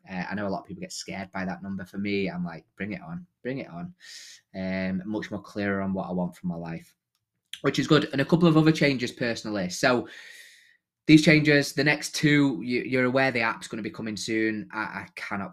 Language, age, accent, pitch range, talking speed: English, 20-39, British, 100-120 Hz, 240 wpm